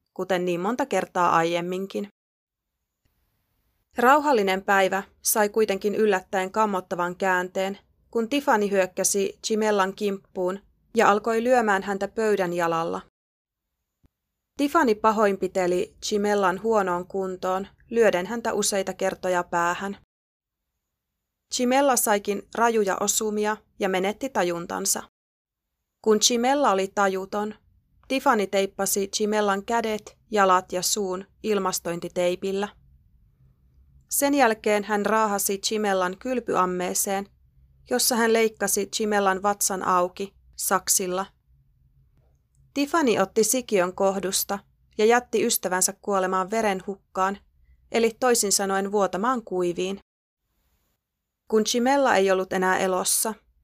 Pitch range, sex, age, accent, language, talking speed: 185-220 Hz, female, 30-49, native, Finnish, 95 wpm